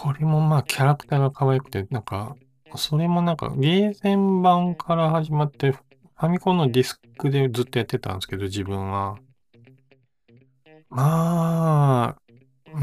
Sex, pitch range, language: male, 110-140 Hz, Japanese